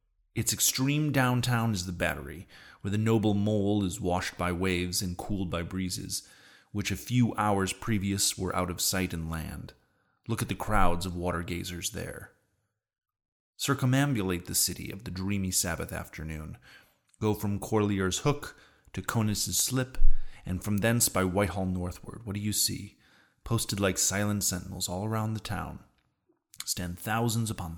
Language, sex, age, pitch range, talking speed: English, male, 30-49, 90-110 Hz, 155 wpm